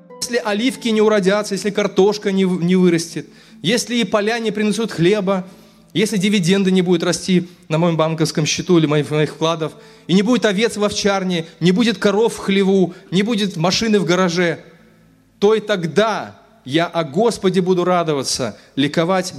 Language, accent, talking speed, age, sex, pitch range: Russian, native, 160 wpm, 20-39, male, 165-210 Hz